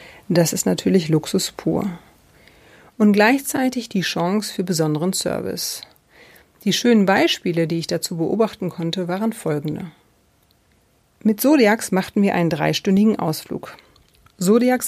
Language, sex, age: German, female, 40-59